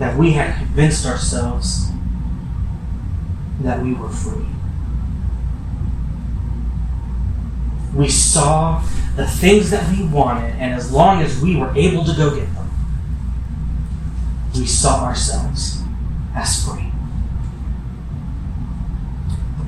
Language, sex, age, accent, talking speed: English, male, 30-49, American, 100 wpm